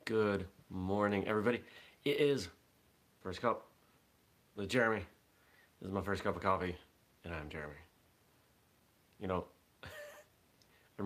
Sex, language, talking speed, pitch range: male, English, 120 wpm, 80-105 Hz